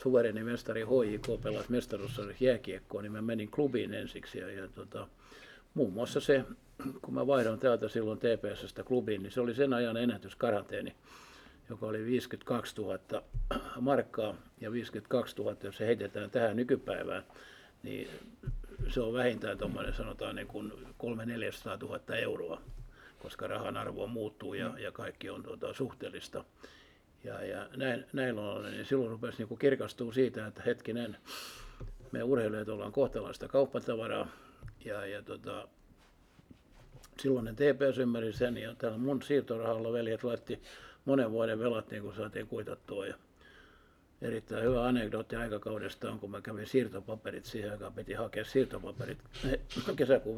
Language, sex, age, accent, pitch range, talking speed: Finnish, male, 60-79, native, 110-125 Hz, 140 wpm